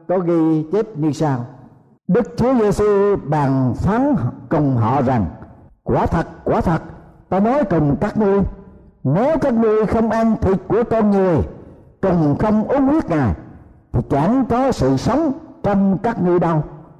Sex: male